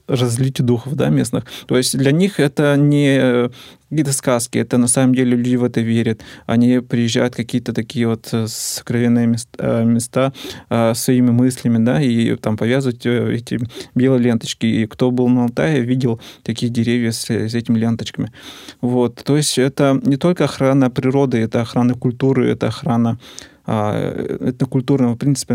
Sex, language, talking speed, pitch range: male, Russian, 160 wpm, 115-130 Hz